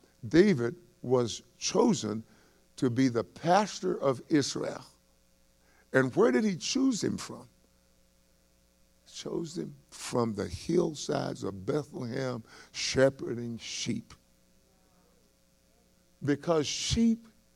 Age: 60-79